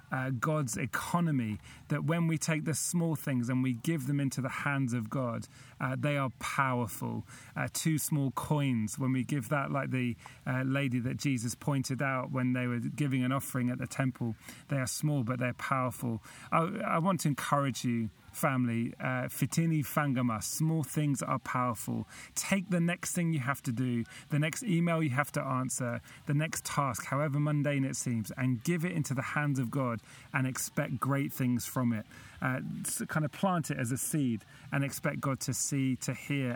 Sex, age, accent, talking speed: male, 30-49, British, 195 wpm